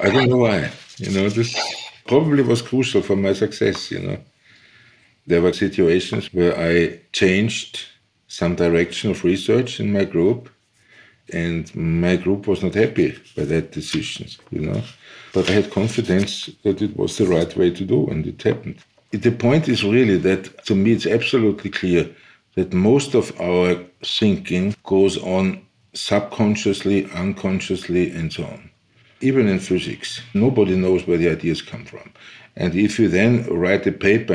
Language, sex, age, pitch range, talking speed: English, male, 50-69, 90-105 Hz, 160 wpm